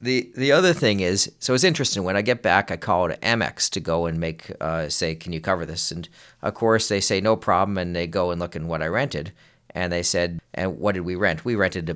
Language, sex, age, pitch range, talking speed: English, male, 40-59, 85-110 Hz, 260 wpm